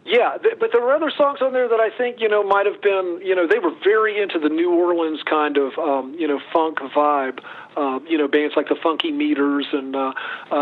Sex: male